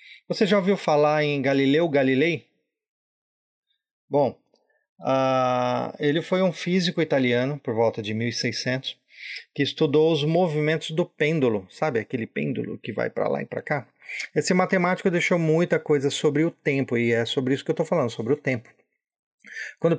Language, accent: Portuguese, Brazilian